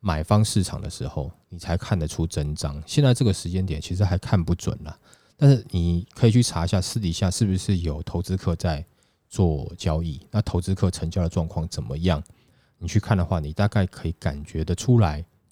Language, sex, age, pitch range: Chinese, male, 20-39, 85-110 Hz